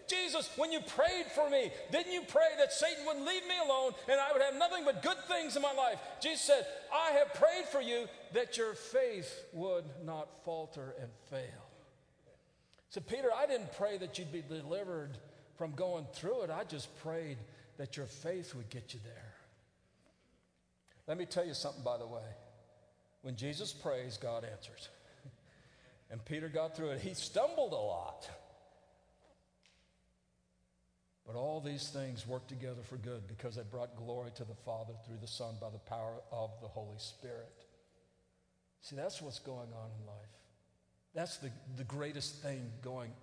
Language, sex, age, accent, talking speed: English, male, 50-69, American, 170 wpm